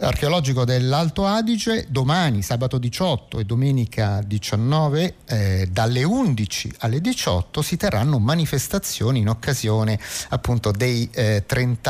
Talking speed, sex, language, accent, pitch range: 115 wpm, male, Italian, native, 105-150 Hz